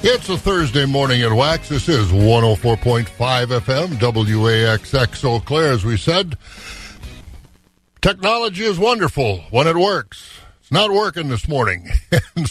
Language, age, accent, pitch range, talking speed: English, 60-79, American, 120-170 Hz, 135 wpm